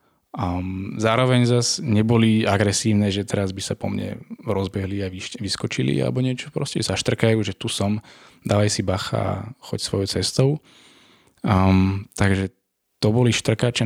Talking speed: 145 wpm